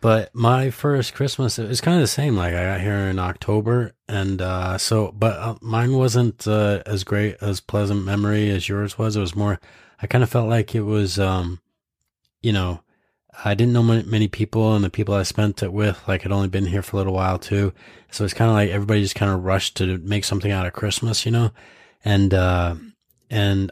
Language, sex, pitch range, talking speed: English, male, 95-110 Hz, 225 wpm